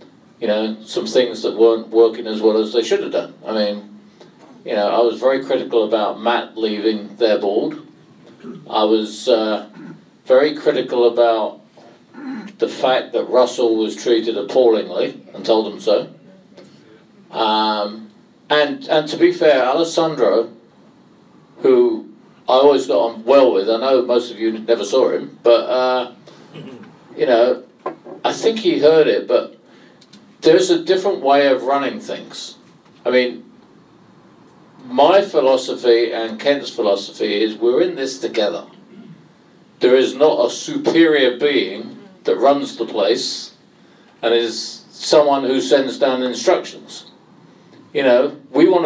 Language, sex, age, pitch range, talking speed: English, male, 50-69, 115-155 Hz, 145 wpm